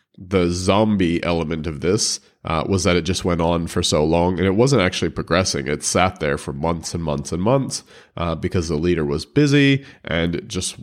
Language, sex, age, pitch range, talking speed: English, male, 30-49, 85-110 Hz, 210 wpm